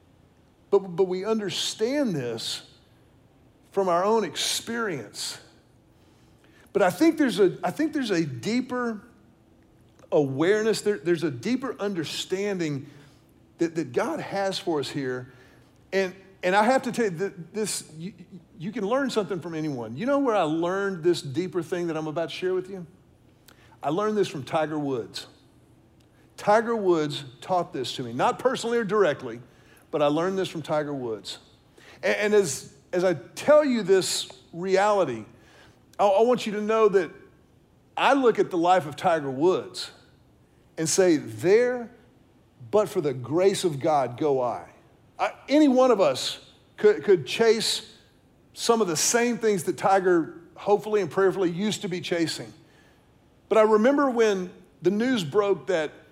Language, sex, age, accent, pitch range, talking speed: English, male, 50-69, American, 160-215 Hz, 155 wpm